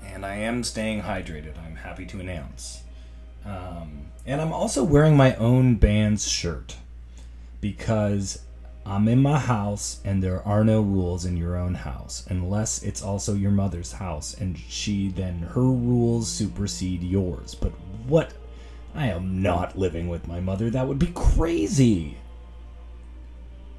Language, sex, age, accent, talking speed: English, male, 30-49, American, 145 wpm